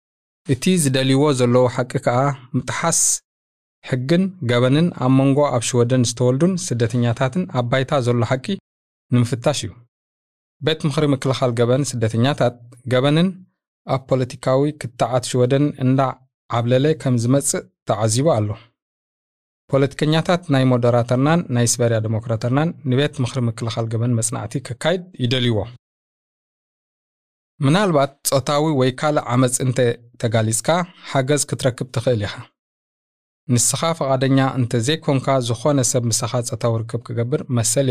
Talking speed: 95 wpm